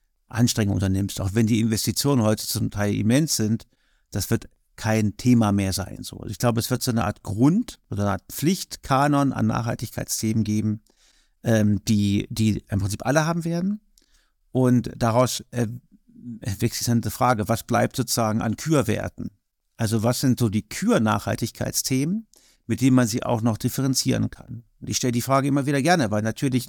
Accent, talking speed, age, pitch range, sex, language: German, 165 wpm, 50-69, 110-130 Hz, male, German